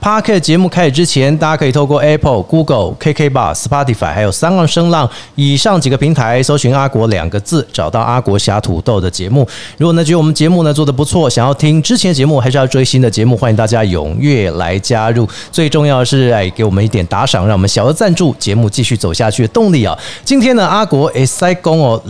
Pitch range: 115-165 Hz